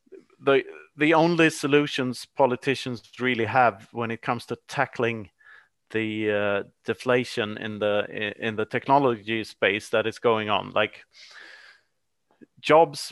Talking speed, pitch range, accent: 125 wpm, 110-135 Hz, Norwegian